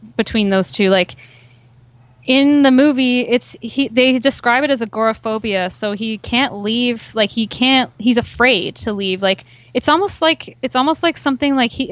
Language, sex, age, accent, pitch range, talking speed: English, female, 20-39, American, 185-240 Hz, 175 wpm